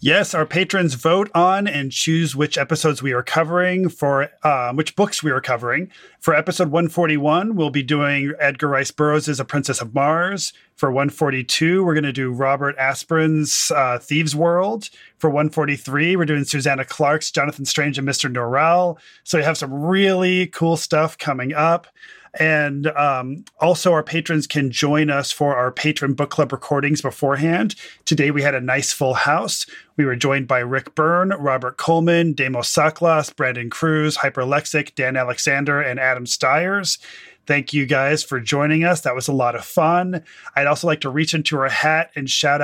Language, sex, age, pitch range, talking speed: English, male, 30-49, 140-165 Hz, 175 wpm